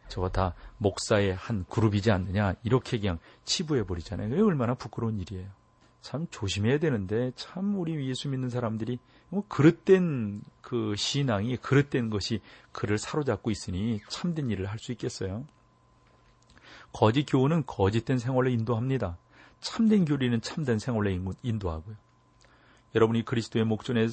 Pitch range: 105-130 Hz